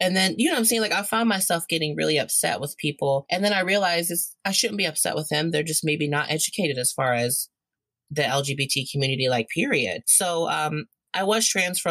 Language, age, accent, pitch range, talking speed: English, 30-49, American, 140-195 Hz, 225 wpm